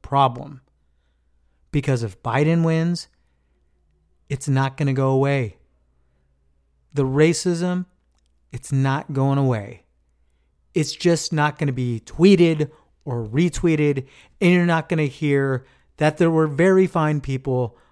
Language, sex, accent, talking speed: English, male, American, 125 wpm